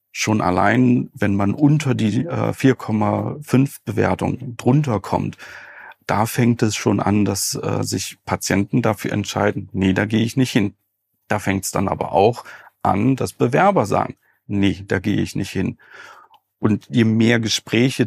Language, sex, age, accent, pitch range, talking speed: German, male, 40-59, German, 100-130 Hz, 155 wpm